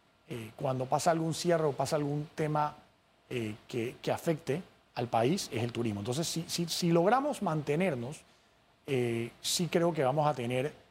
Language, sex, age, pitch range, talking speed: Spanish, male, 30-49, 120-155 Hz, 165 wpm